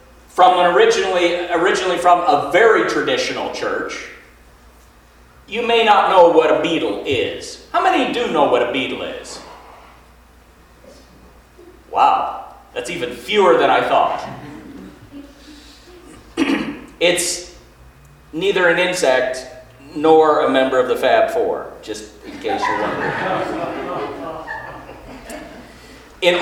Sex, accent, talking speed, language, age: male, American, 110 wpm, English, 40-59